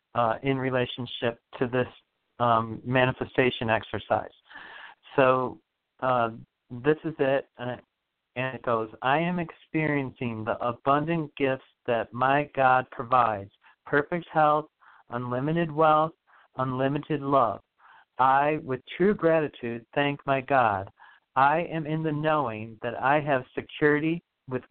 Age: 50-69